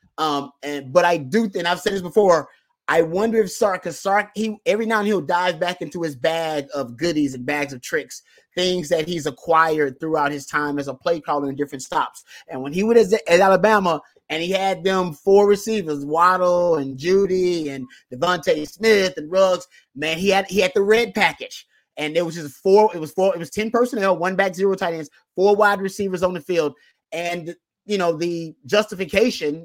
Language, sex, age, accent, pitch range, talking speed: English, male, 30-49, American, 160-200 Hz, 215 wpm